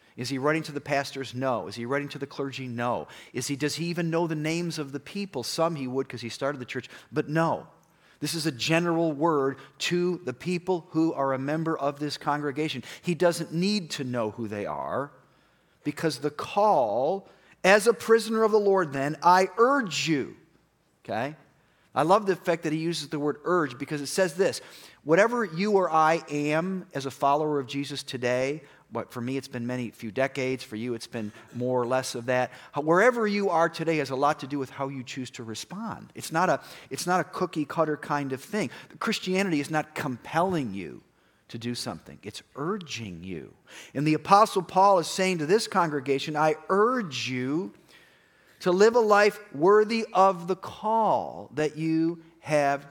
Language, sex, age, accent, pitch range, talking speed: English, male, 40-59, American, 135-185 Hz, 195 wpm